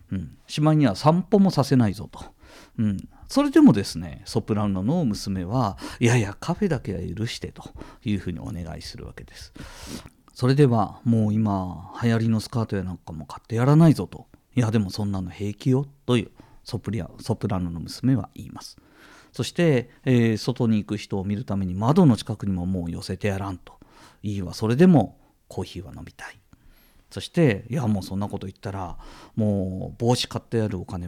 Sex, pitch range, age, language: male, 95-135 Hz, 40-59, Japanese